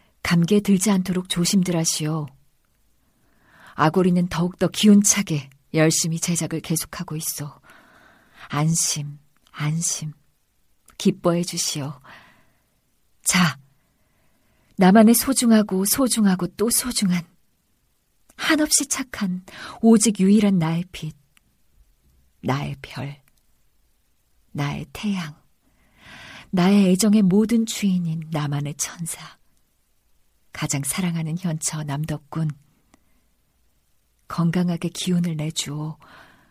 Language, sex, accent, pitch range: Korean, female, native, 150-200 Hz